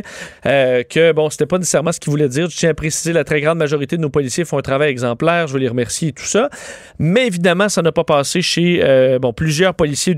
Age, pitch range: 40-59, 140-180 Hz